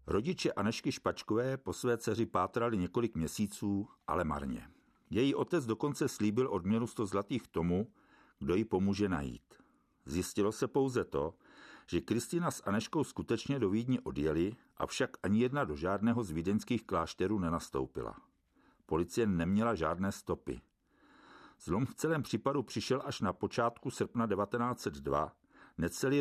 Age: 50-69